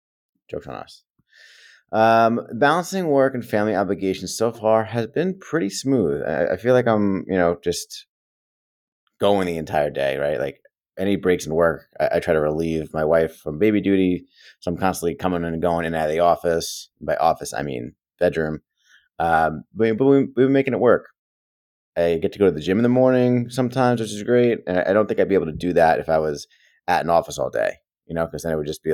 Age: 30-49